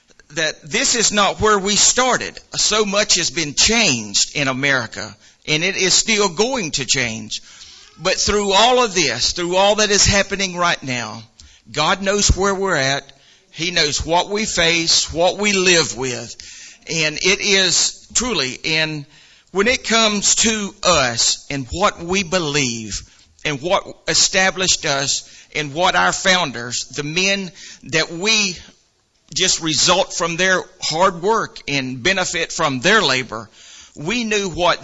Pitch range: 140-195 Hz